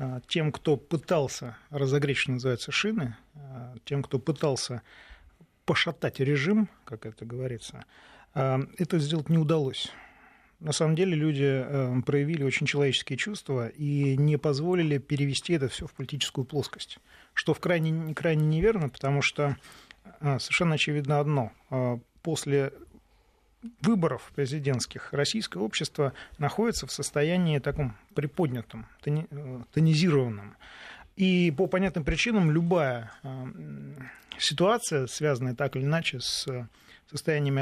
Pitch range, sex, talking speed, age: 135-170 Hz, male, 110 wpm, 40-59